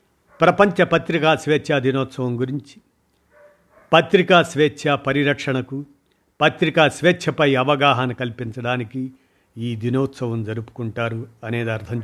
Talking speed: 85 wpm